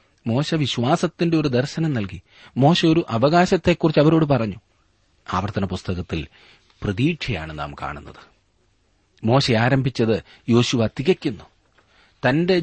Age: 40-59